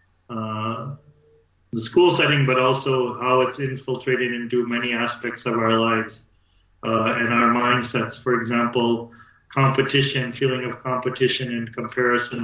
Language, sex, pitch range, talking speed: English, male, 115-130 Hz, 130 wpm